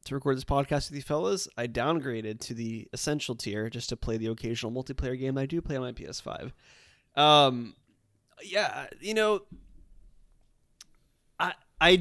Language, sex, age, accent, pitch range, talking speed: English, male, 20-39, American, 115-145 Hz, 155 wpm